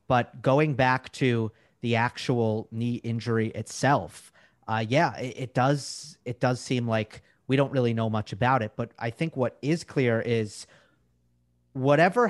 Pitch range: 115-145 Hz